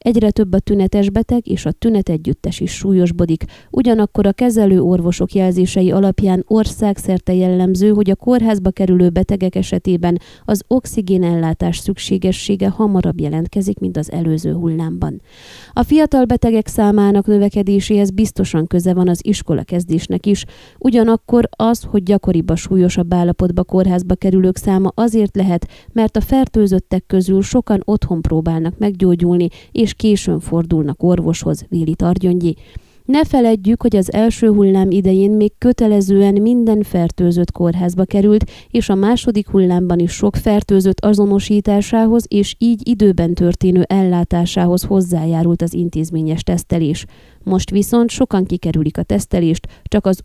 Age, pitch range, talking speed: 20-39, 175-210 Hz, 130 wpm